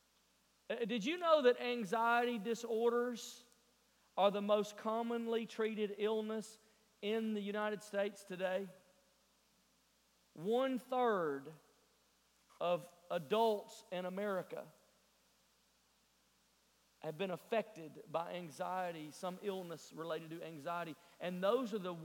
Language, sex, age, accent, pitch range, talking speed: English, male, 40-59, American, 165-215 Hz, 100 wpm